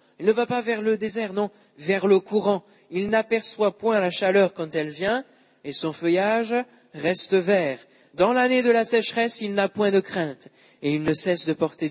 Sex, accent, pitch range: male, French, 150-210 Hz